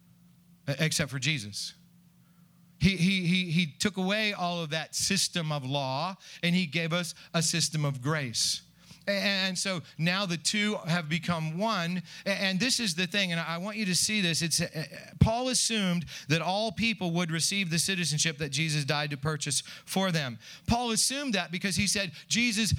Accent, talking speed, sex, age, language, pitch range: American, 180 wpm, male, 40-59, English, 165-200 Hz